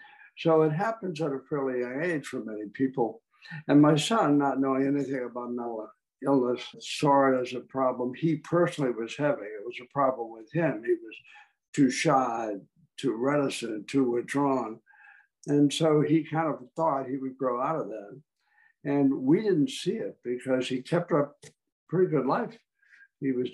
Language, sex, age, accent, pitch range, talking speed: English, male, 60-79, American, 130-155 Hz, 175 wpm